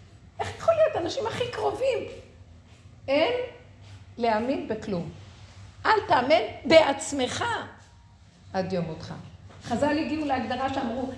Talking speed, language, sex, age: 100 wpm, Hebrew, female, 50-69